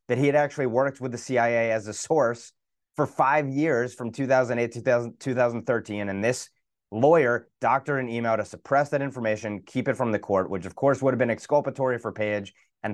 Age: 30-49